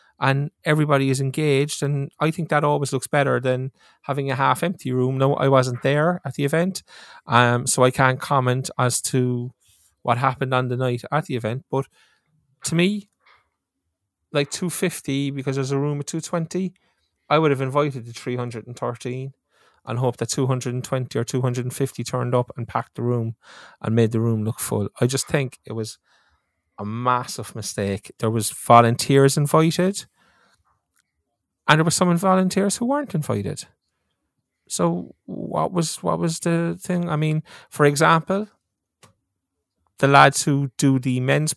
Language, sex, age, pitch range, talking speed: English, male, 20-39, 125-165 Hz, 160 wpm